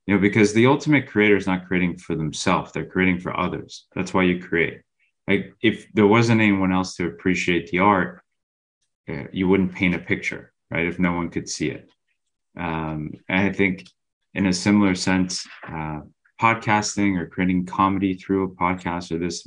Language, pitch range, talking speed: English, 85-110 Hz, 180 wpm